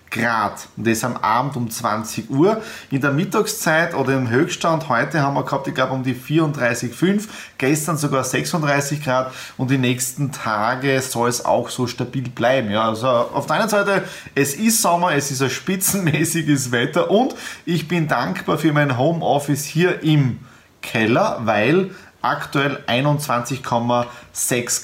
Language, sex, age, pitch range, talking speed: German, male, 30-49, 125-160 Hz, 150 wpm